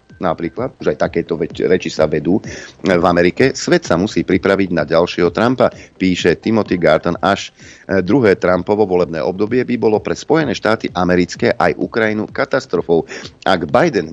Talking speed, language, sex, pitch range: 150 wpm, Slovak, male, 85-105 Hz